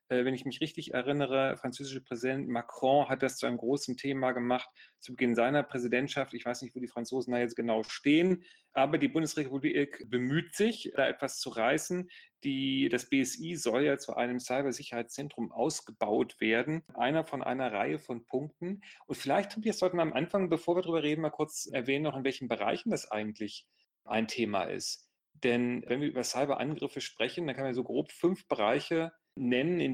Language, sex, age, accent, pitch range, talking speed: German, male, 40-59, German, 125-150 Hz, 185 wpm